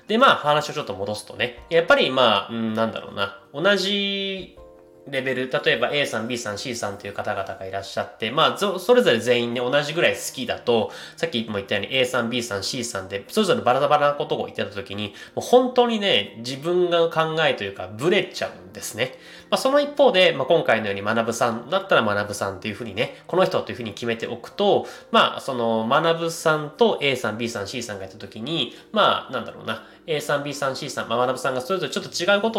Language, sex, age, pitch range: Japanese, male, 20-39, 105-170 Hz